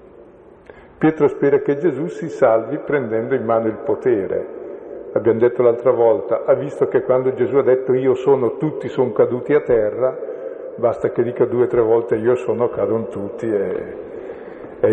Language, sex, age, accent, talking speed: Italian, male, 50-69, native, 170 wpm